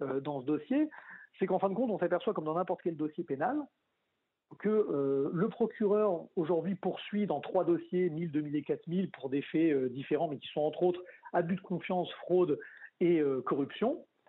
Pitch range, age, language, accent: 155-215 Hz, 40-59, French, French